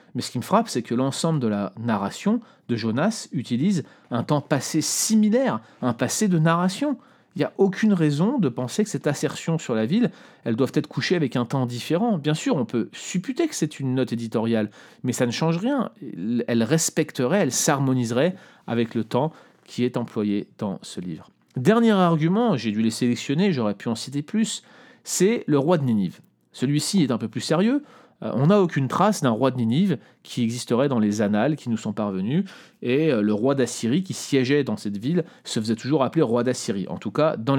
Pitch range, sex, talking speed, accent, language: 115-180 Hz, male, 205 wpm, French, French